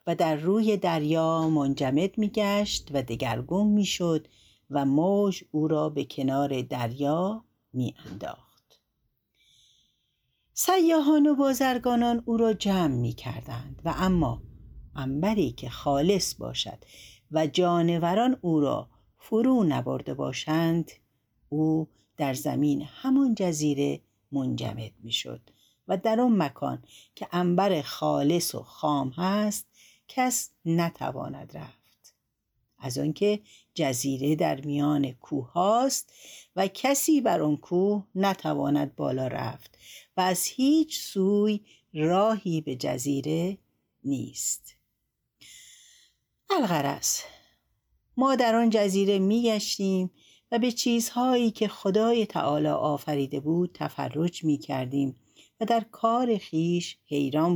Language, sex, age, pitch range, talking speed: Persian, female, 60-79, 140-210 Hz, 105 wpm